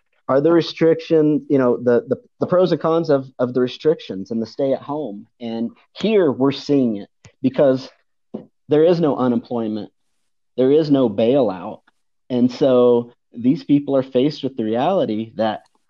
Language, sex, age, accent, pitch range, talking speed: English, male, 40-59, American, 115-135 Hz, 160 wpm